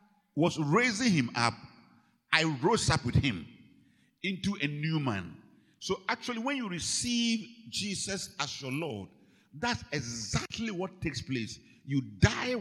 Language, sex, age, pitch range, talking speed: English, male, 50-69, 105-175 Hz, 140 wpm